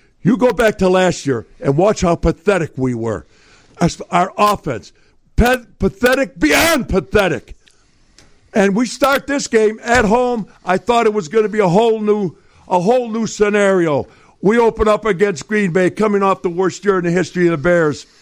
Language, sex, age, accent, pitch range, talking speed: English, male, 60-79, American, 165-230 Hz, 175 wpm